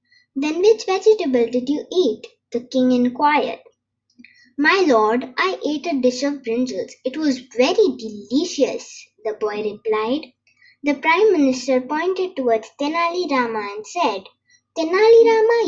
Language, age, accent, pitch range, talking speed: English, 20-39, Indian, 245-370 Hz, 135 wpm